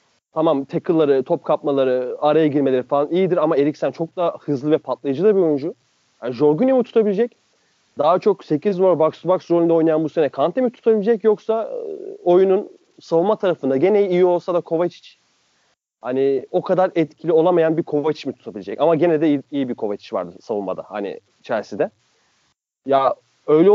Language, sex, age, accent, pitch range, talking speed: Turkish, male, 30-49, native, 145-200 Hz, 165 wpm